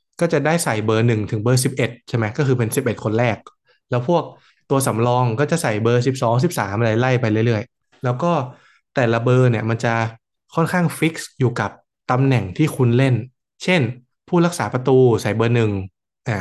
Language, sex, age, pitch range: Thai, male, 20-39, 115-140 Hz